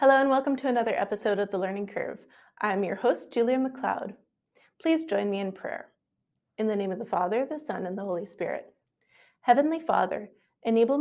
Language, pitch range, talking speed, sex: English, 200-250 Hz, 190 wpm, female